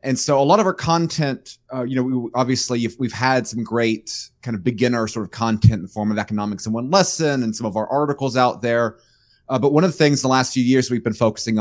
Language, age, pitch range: English, 30-49, 110-125 Hz